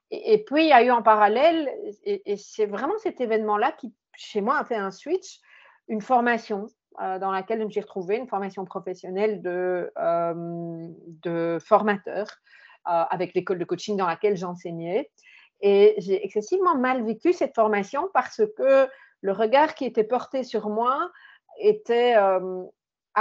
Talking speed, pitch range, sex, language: 165 wpm, 190-245 Hz, female, French